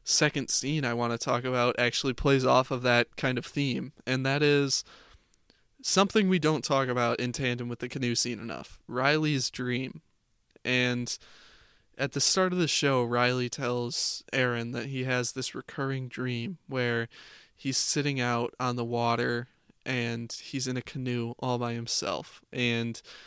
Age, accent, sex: 20-39, American, male